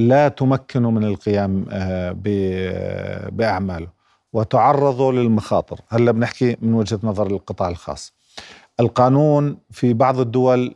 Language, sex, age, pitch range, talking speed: Arabic, male, 50-69, 105-130 Hz, 100 wpm